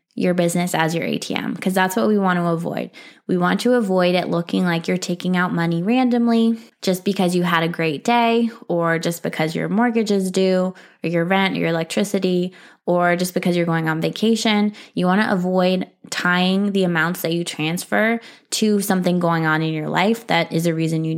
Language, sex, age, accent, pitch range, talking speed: English, female, 20-39, American, 175-210 Hz, 205 wpm